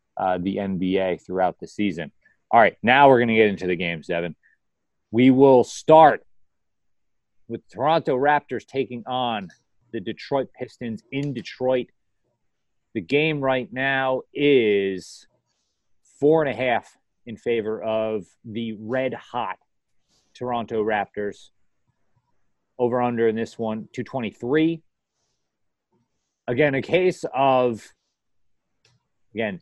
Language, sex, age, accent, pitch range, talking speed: English, male, 30-49, American, 105-135 Hz, 120 wpm